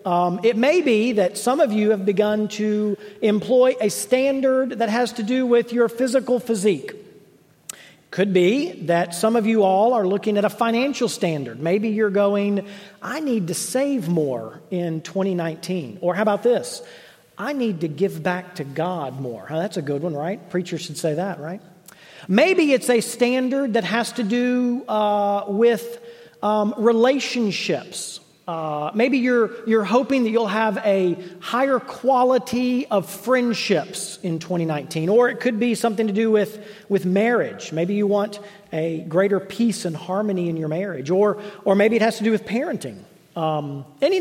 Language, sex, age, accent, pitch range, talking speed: English, male, 40-59, American, 180-240 Hz, 170 wpm